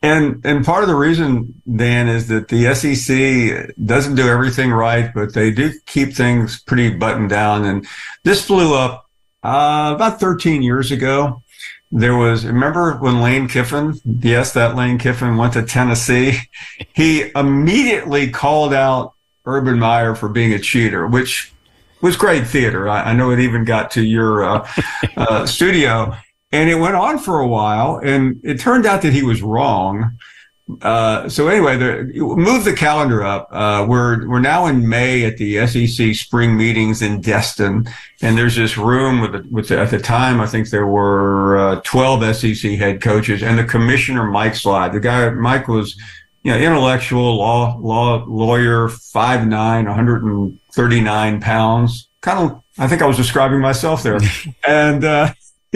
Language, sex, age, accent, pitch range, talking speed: English, male, 50-69, American, 110-135 Hz, 165 wpm